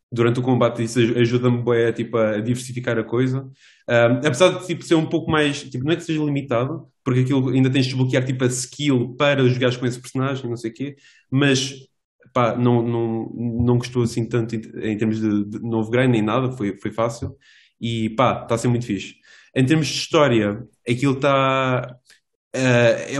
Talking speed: 200 wpm